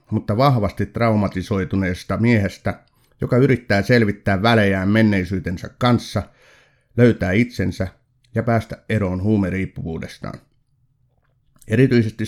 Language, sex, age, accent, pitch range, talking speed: Finnish, male, 60-79, native, 95-125 Hz, 85 wpm